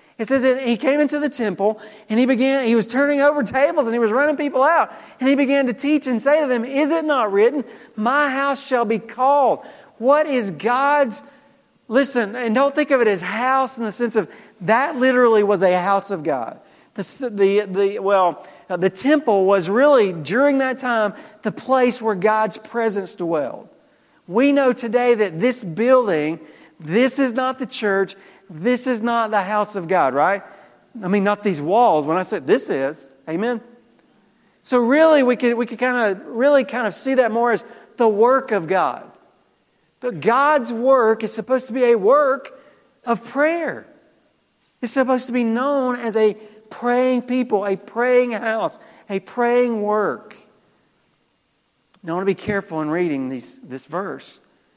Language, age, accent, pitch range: English, 40-59, American, 205-260 Hz